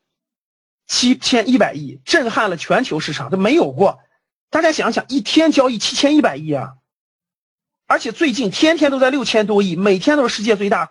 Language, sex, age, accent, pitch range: Chinese, male, 40-59, native, 170-275 Hz